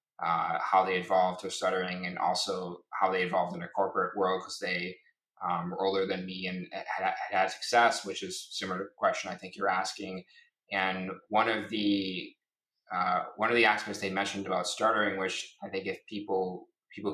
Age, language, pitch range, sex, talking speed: 20-39, English, 95-100 Hz, male, 190 wpm